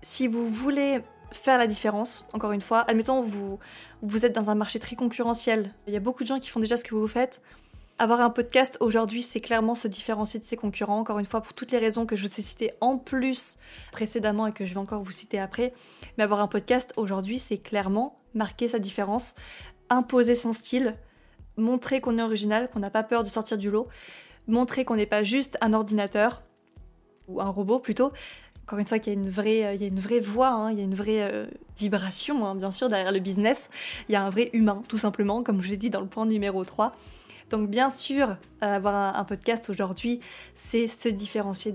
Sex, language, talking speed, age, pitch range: female, French, 225 wpm, 20-39, 205-235 Hz